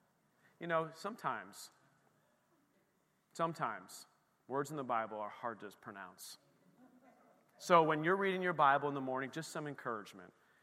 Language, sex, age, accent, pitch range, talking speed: English, male, 40-59, American, 140-215 Hz, 135 wpm